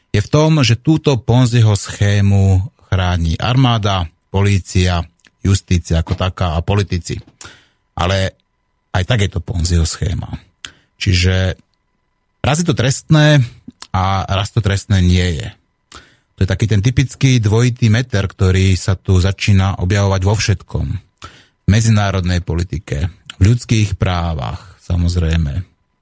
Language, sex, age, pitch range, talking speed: Slovak, male, 30-49, 90-110 Hz, 125 wpm